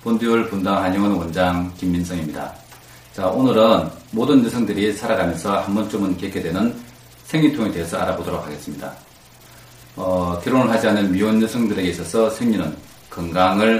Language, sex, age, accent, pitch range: Korean, male, 40-59, native, 85-105 Hz